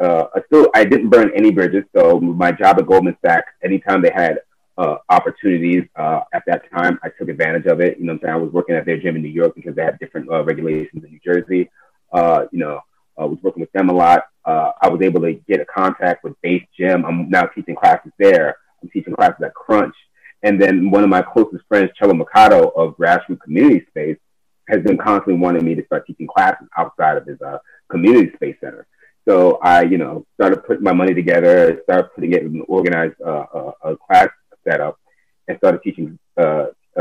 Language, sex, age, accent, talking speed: English, male, 30-49, American, 220 wpm